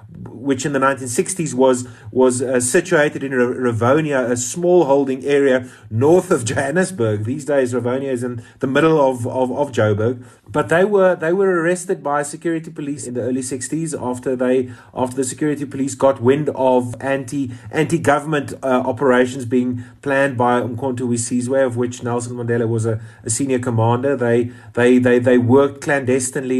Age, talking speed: 30-49, 170 wpm